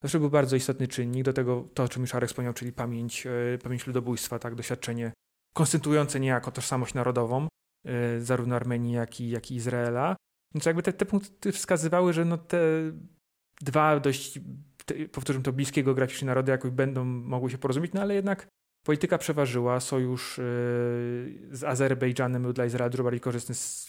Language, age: Polish, 30-49